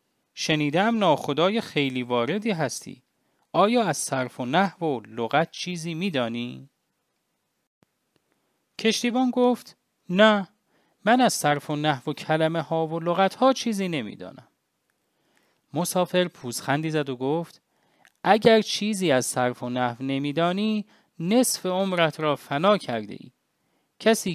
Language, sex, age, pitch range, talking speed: English, male, 30-49, 130-210 Hz, 120 wpm